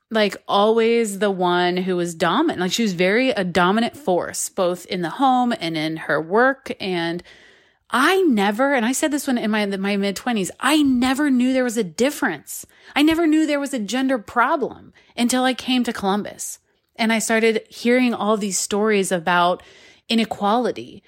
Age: 30-49